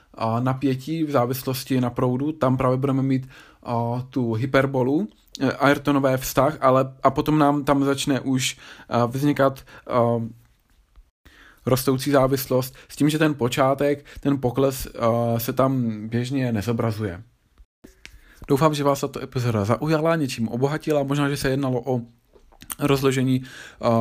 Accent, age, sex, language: native, 20-39, male, Czech